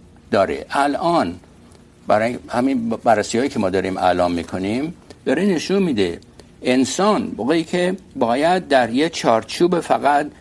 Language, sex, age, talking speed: Urdu, male, 60-79, 135 wpm